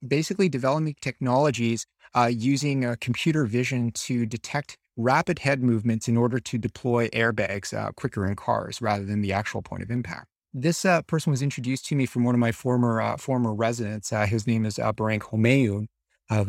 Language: English